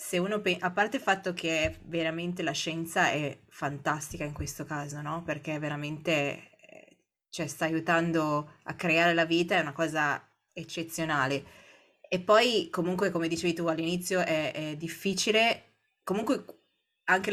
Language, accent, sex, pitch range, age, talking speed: Italian, native, female, 150-175 Hz, 20-39, 145 wpm